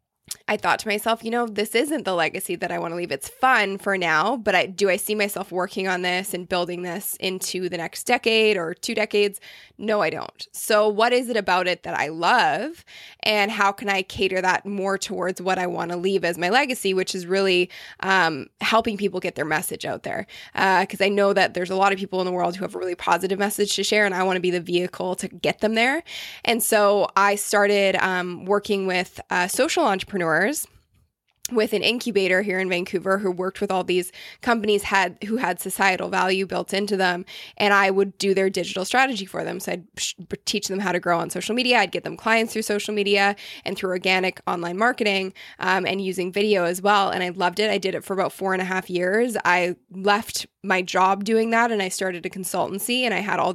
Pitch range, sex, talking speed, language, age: 185-215 Hz, female, 230 wpm, English, 20-39